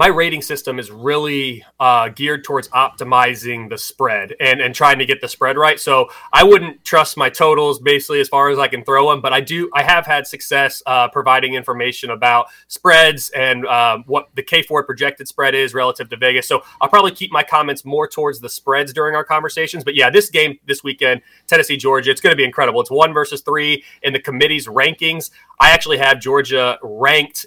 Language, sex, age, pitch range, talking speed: English, male, 30-49, 130-165 Hz, 205 wpm